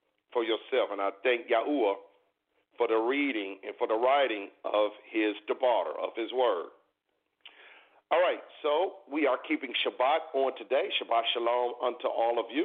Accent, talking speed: American, 160 wpm